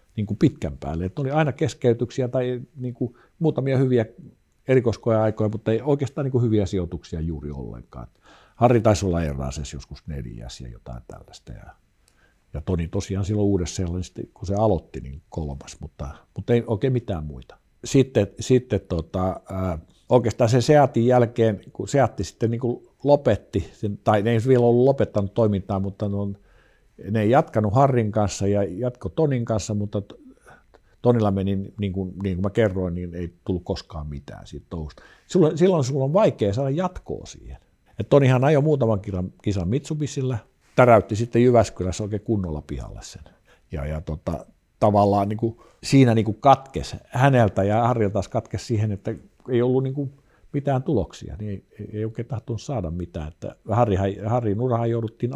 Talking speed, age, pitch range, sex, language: 160 wpm, 50-69, 95-125 Hz, male, Finnish